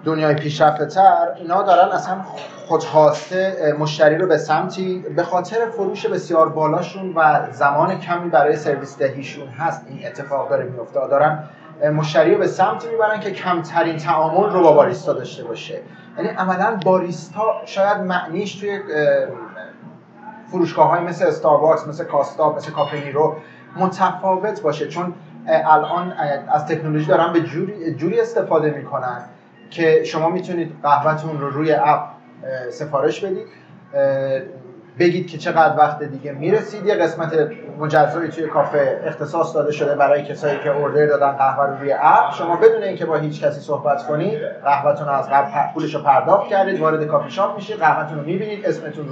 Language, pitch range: Persian, 150-185 Hz